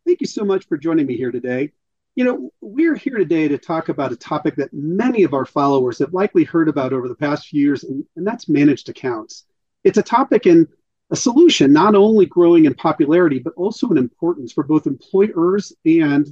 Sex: male